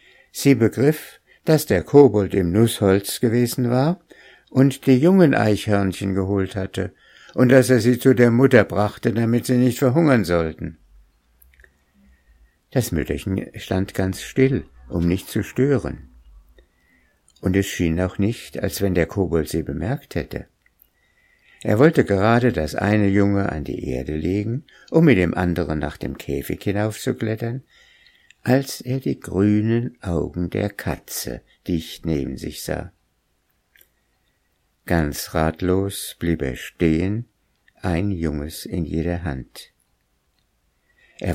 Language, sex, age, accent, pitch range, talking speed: German, male, 60-79, German, 80-120 Hz, 130 wpm